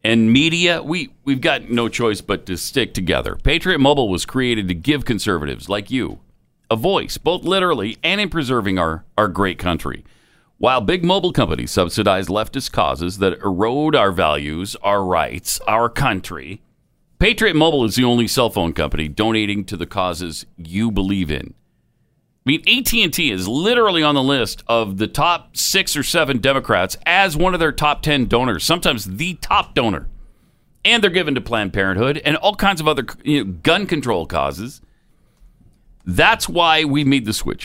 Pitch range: 90-140 Hz